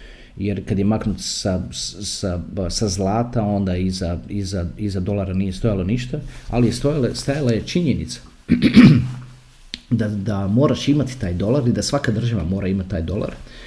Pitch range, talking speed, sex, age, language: 95-120 Hz, 160 wpm, male, 40-59, Croatian